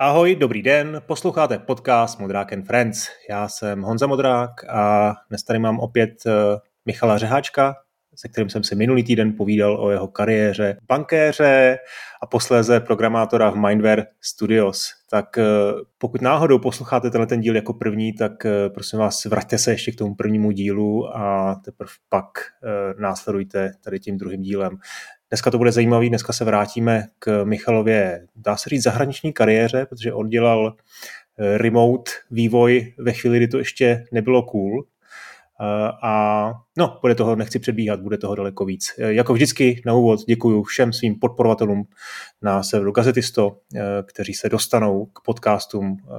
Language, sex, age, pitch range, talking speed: Czech, male, 30-49, 105-120 Hz, 150 wpm